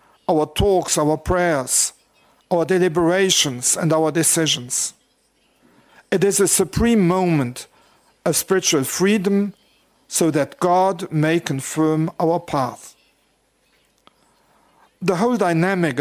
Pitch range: 155-195 Hz